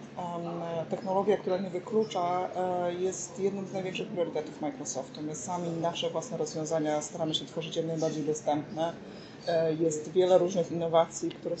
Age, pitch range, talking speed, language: 30-49, 165-185 Hz, 135 wpm, Polish